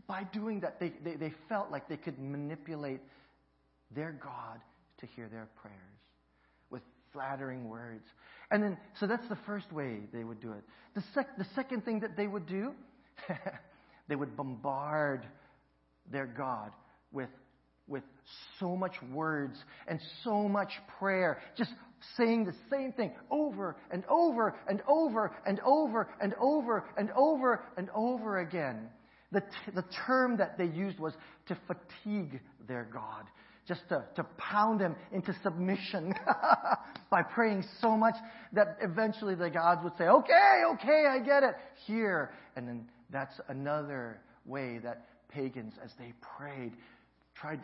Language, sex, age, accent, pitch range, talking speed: English, male, 40-59, American, 135-210 Hz, 155 wpm